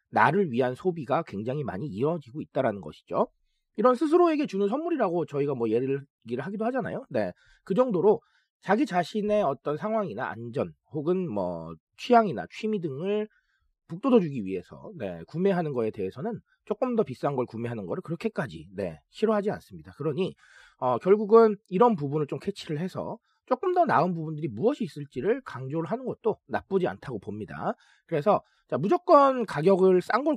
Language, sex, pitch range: Korean, male, 135-225 Hz